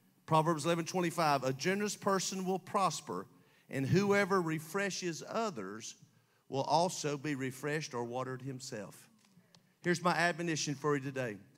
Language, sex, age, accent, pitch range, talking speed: English, male, 50-69, American, 150-190 Hz, 125 wpm